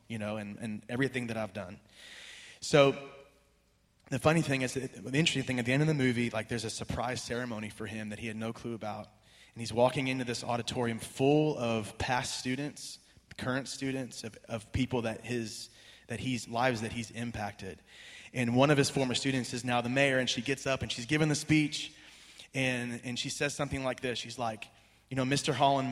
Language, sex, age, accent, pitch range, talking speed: English, male, 20-39, American, 110-130 Hz, 210 wpm